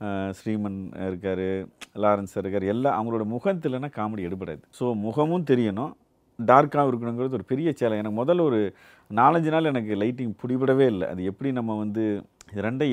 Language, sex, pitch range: Tamil, male, 105-135 Hz